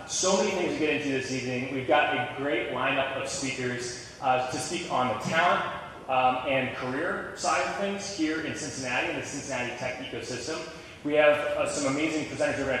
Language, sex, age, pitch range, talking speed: English, male, 30-49, 125-155 Hz, 205 wpm